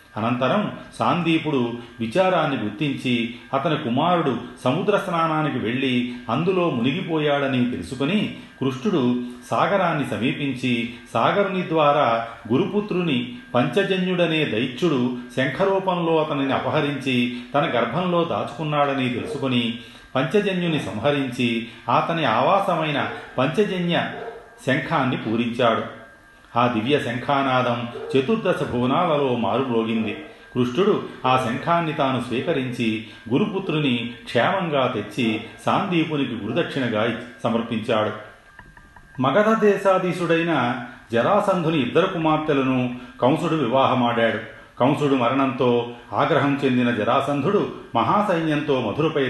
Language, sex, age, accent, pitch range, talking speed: Telugu, male, 40-59, native, 120-155 Hz, 80 wpm